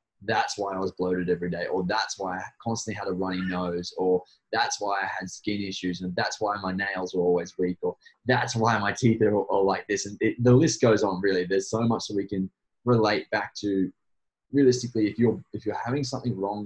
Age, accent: 20-39, Australian